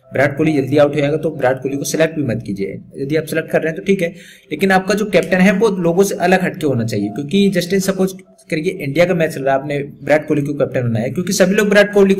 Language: Hindi